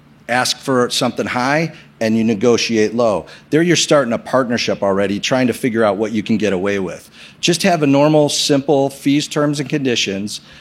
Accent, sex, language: American, male, English